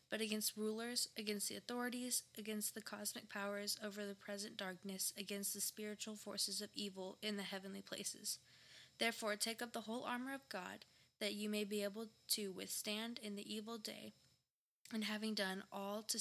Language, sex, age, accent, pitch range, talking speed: English, female, 10-29, American, 200-225 Hz, 180 wpm